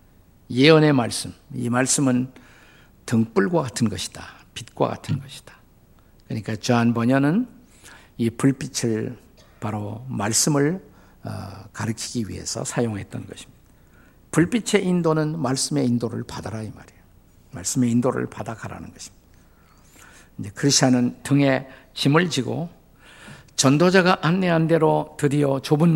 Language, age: Korean, 50-69